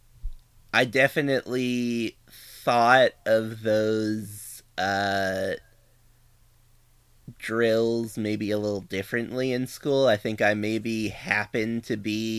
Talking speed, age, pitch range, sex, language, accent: 95 wpm, 30-49, 100-115 Hz, male, English, American